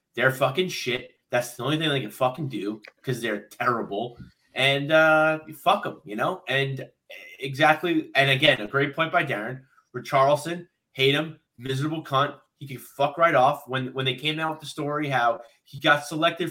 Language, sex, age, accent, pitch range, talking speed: English, male, 20-39, American, 130-155 Hz, 190 wpm